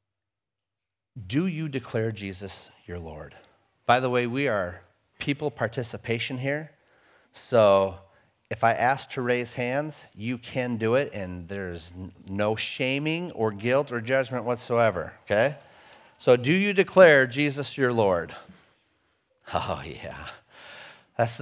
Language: English